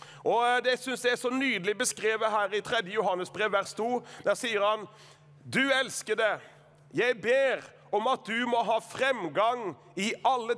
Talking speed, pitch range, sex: 170 wpm, 185-255 Hz, male